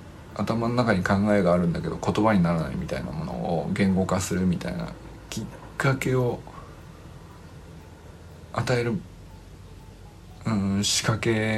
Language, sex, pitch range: Japanese, male, 90-120 Hz